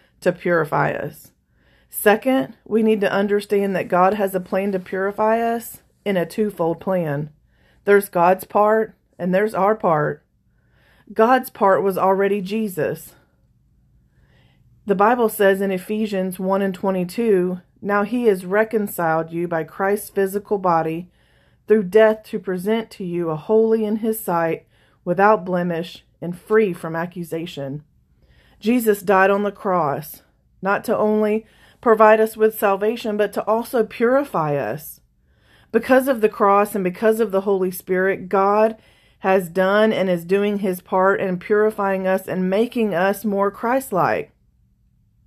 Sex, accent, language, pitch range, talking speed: female, American, English, 165-215 Hz, 145 wpm